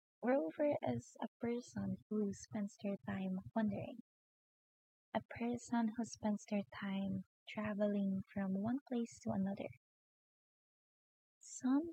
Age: 20-39